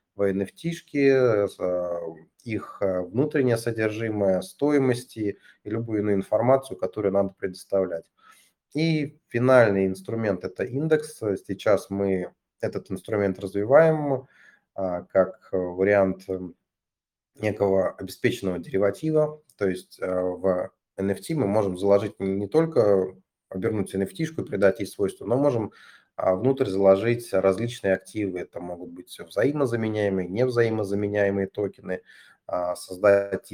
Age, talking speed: 30-49, 100 wpm